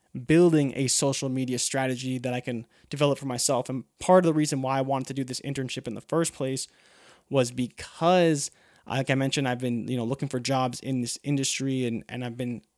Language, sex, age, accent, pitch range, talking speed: English, male, 20-39, American, 125-150 Hz, 215 wpm